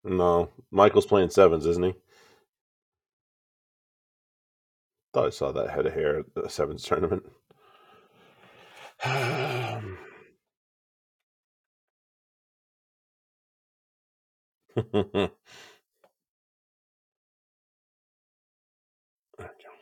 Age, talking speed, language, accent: 40-59, 55 wpm, English, American